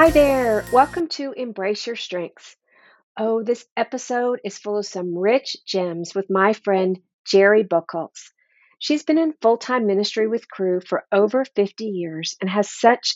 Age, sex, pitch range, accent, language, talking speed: 50-69, female, 185-235 Hz, American, English, 160 wpm